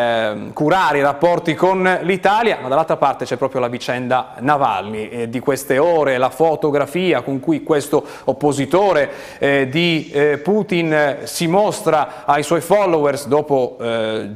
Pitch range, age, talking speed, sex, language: 130-160 Hz, 30-49, 140 wpm, male, Italian